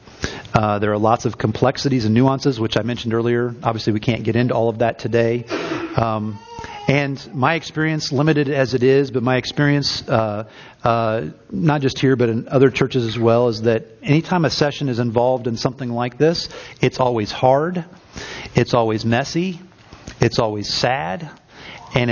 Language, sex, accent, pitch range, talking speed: English, male, American, 115-140 Hz, 175 wpm